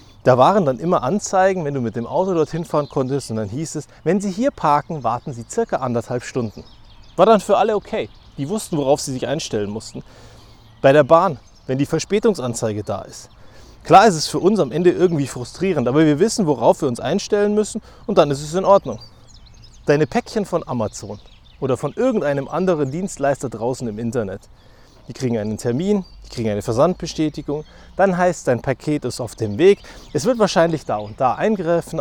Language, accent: German, German